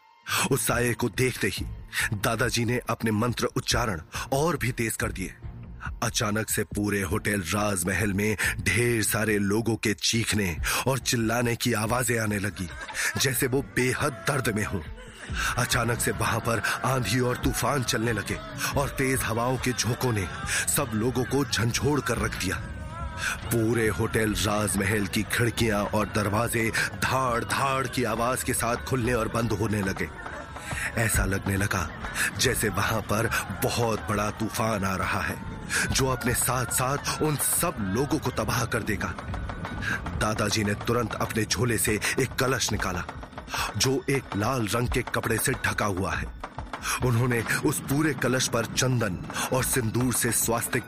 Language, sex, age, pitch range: Hindi, male, 30-49, 105-125 Hz